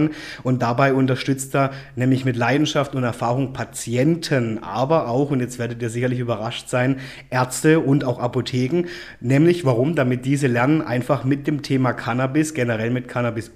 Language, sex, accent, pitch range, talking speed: German, male, German, 120-145 Hz, 160 wpm